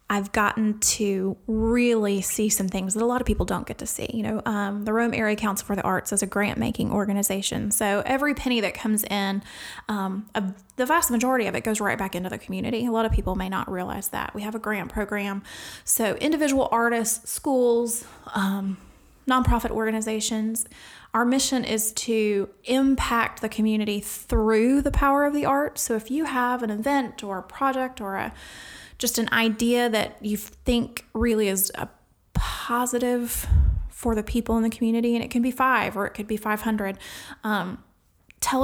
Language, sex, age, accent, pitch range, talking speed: English, female, 20-39, American, 205-245 Hz, 185 wpm